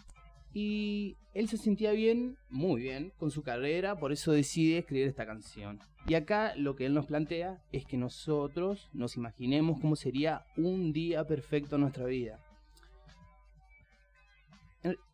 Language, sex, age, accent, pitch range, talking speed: Spanish, male, 20-39, Argentinian, 125-165 Hz, 145 wpm